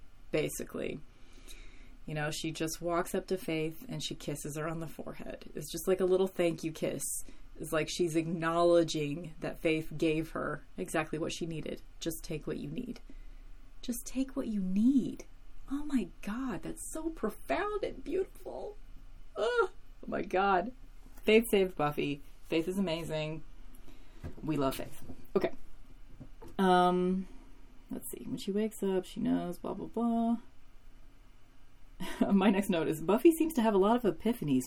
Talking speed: 160 wpm